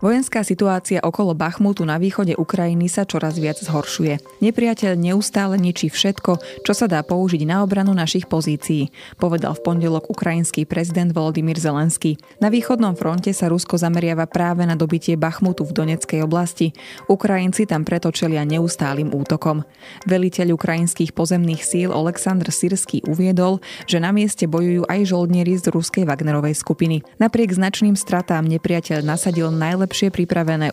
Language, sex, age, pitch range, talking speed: Slovak, female, 20-39, 160-190 Hz, 140 wpm